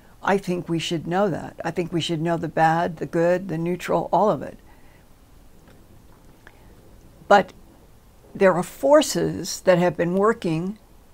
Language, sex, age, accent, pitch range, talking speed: English, female, 60-79, American, 170-195 Hz, 150 wpm